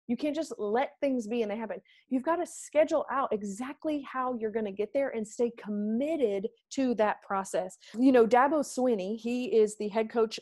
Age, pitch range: 30-49, 205-265 Hz